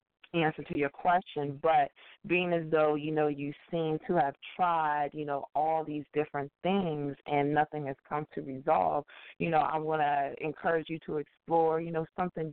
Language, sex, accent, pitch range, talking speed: English, female, American, 140-160 Hz, 185 wpm